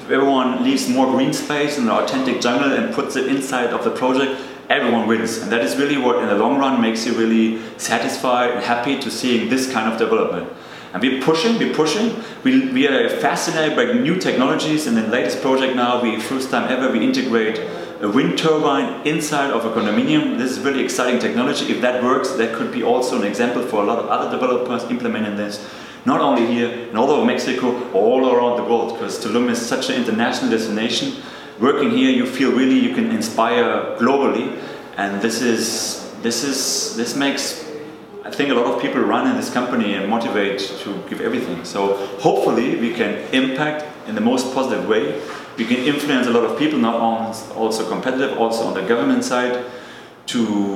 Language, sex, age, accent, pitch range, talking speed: Spanish, male, 30-49, German, 115-150 Hz, 195 wpm